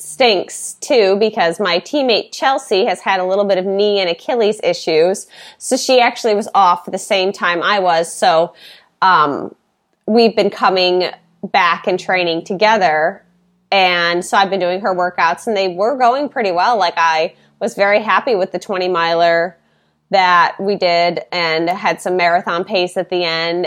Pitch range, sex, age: 170-205 Hz, female, 20-39